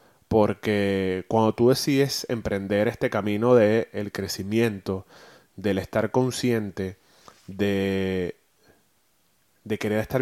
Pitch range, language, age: 100-115 Hz, Spanish, 20-39